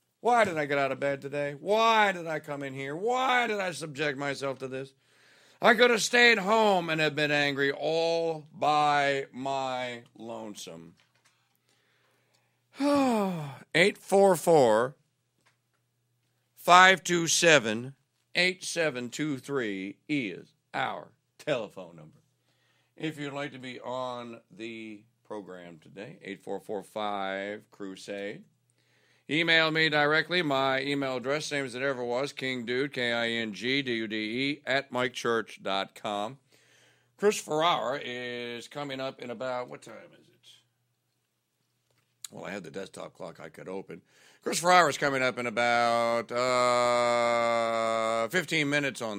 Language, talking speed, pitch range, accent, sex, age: English, 115 wpm, 120-155 Hz, American, male, 50-69